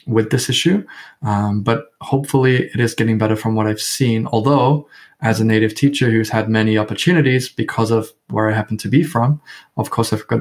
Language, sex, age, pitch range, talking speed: English, male, 20-39, 110-125 Hz, 200 wpm